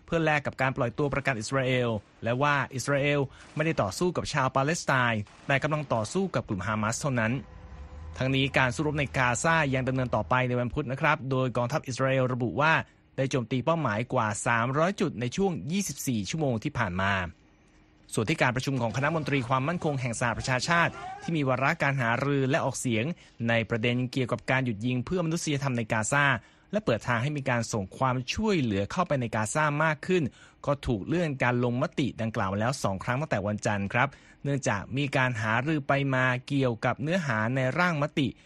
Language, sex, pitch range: Thai, male, 120-150 Hz